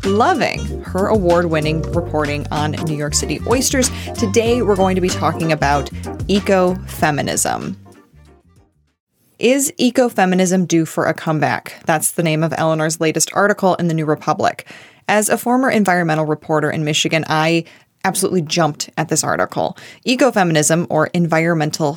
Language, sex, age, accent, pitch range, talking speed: English, female, 20-39, American, 155-195 Hz, 135 wpm